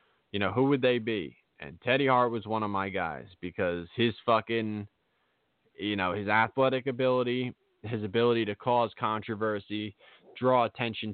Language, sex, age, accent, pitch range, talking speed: English, male, 20-39, American, 105-135 Hz, 155 wpm